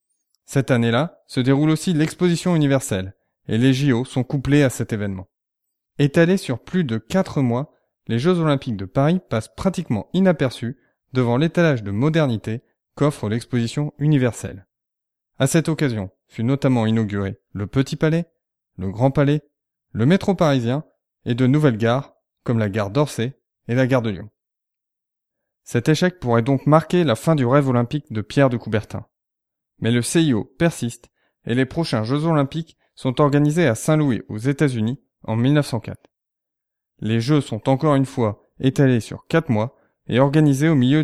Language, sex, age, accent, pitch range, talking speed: French, male, 20-39, French, 115-150 Hz, 160 wpm